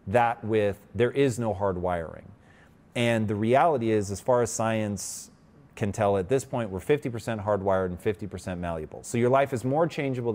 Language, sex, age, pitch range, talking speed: English, male, 30-49, 110-150 Hz, 185 wpm